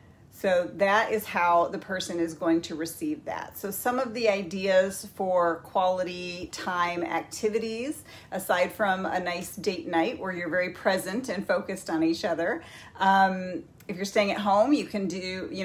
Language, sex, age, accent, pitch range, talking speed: English, female, 40-59, American, 180-225 Hz, 175 wpm